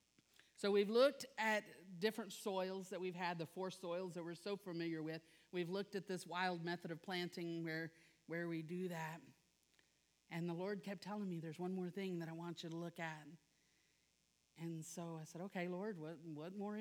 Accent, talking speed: American, 200 wpm